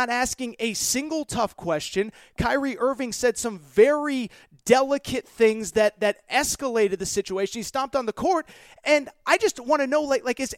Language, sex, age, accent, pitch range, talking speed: English, male, 30-49, American, 195-255 Hz, 175 wpm